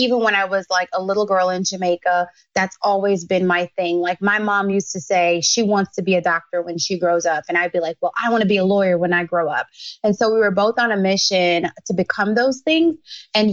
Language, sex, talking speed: English, female, 260 wpm